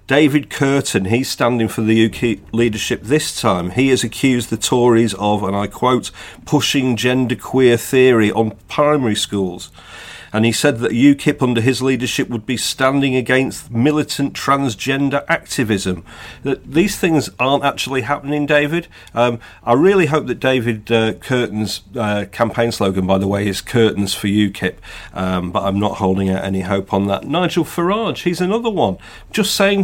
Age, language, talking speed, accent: 40-59, English, 165 wpm, British